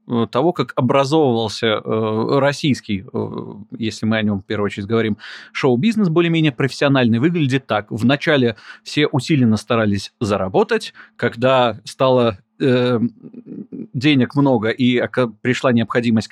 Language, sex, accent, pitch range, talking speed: Russian, male, native, 110-150 Hz, 120 wpm